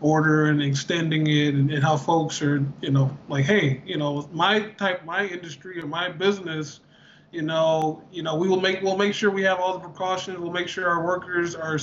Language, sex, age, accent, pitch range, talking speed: English, male, 20-39, American, 155-185 Hz, 215 wpm